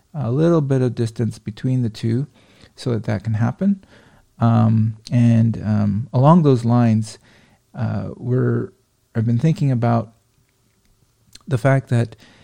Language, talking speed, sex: English, 135 wpm, male